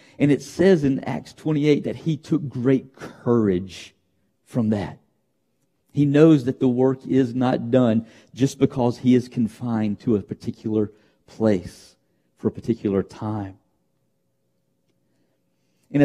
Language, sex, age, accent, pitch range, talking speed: English, male, 50-69, American, 105-140 Hz, 130 wpm